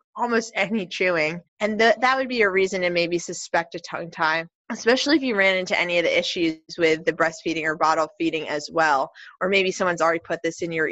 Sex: female